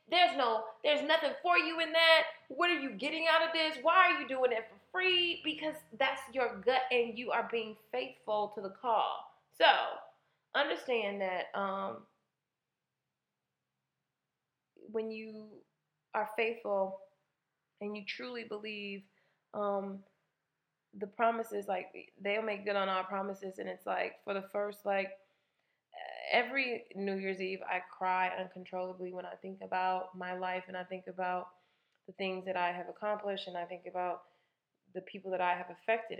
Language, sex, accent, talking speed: English, female, American, 160 wpm